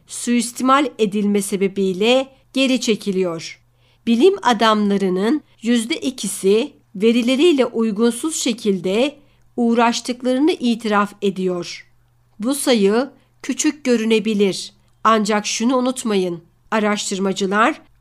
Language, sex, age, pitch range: Turkish, female, 60-79, 200-255 Hz